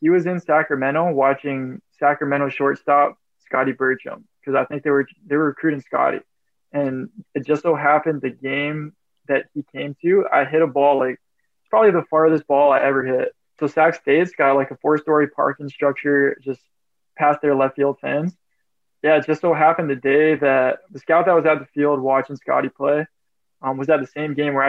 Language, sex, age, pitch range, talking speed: English, male, 20-39, 140-155 Hz, 200 wpm